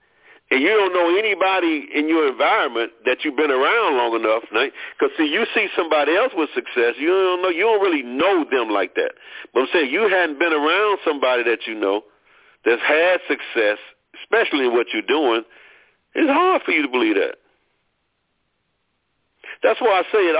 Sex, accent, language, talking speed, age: male, American, English, 185 wpm, 50-69